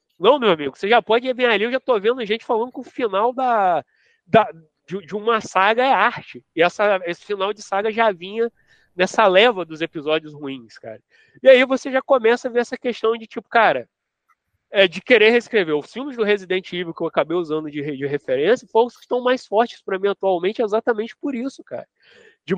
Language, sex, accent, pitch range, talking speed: Portuguese, male, Brazilian, 195-245 Hz, 220 wpm